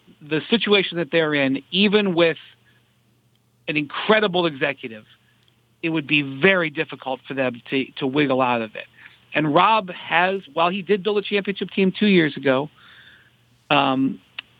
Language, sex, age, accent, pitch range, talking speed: English, male, 50-69, American, 130-180 Hz, 150 wpm